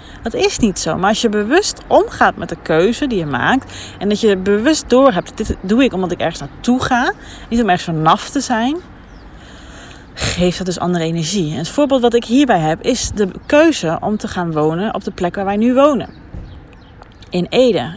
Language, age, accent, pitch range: Dutch, 30-49, Dutch, 160-225 Hz